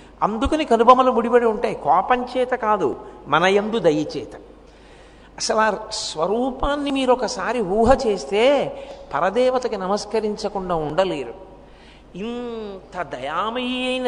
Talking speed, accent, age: 130 wpm, Indian, 50-69